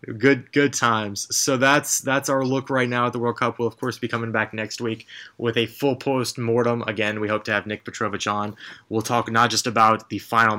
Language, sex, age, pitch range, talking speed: English, male, 20-39, 110-135 Hz, 230 wpm